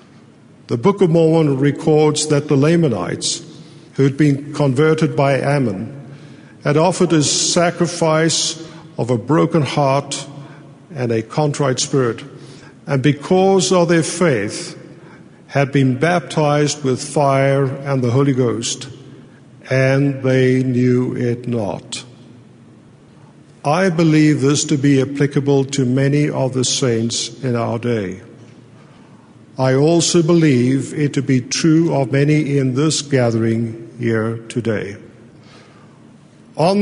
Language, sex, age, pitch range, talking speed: English, male, 50-69, 125-155 Hz, 120 wpm